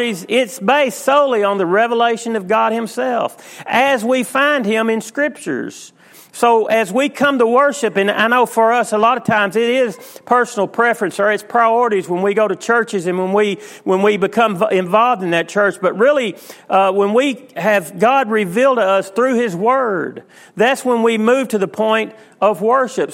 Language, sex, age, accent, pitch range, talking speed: English, male, 40-59, American, 200-245 Hz, 195 wpm